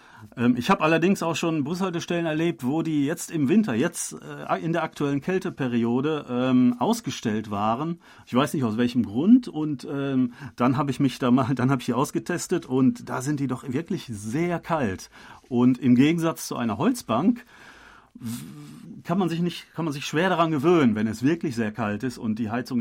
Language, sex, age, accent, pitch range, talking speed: German, male, 40-59, German, 120-155 Hz, 185 wpm